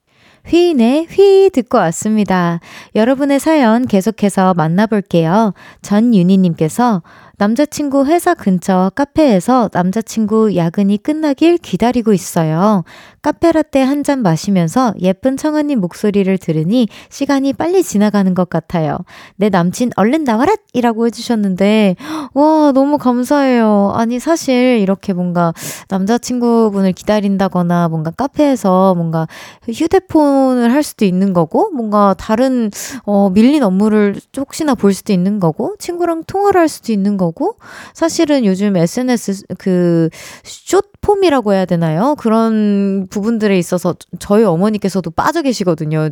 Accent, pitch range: native, 185-265 Hz